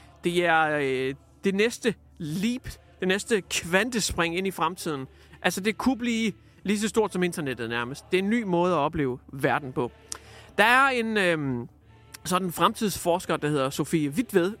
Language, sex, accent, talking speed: Danish, male, native, 170 wpm